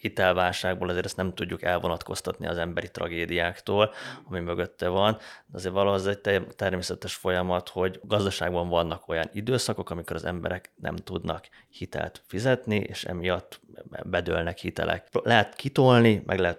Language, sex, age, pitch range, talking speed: Hungarian, male, 30-49, 90-105 Hz, 135 wpm